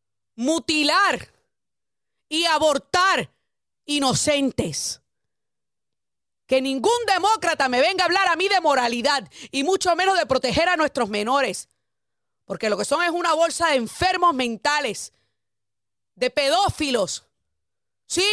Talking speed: 120 wpm